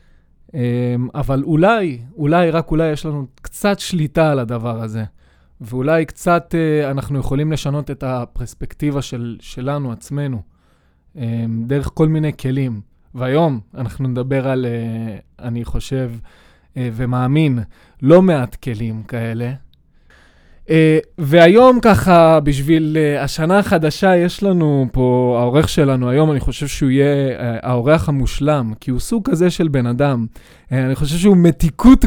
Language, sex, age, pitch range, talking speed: Hebrew, male, 20-39, 120-155 Hz, 130 wpm